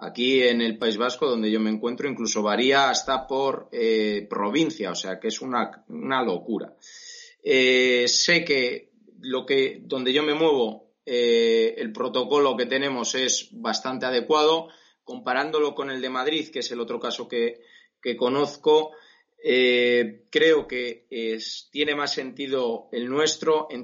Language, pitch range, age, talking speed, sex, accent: Spanish, 110-140 Hz, 30-49, 150 wpm, male, Spanish